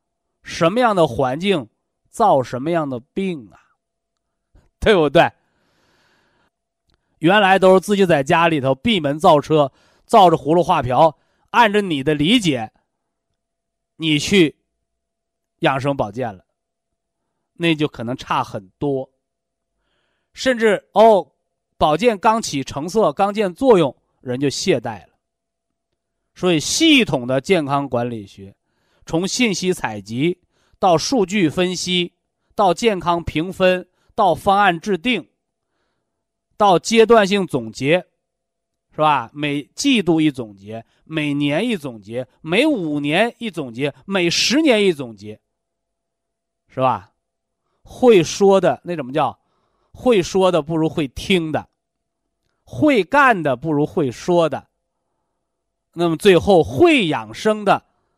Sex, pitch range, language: male, 140-195 Hz, Chinese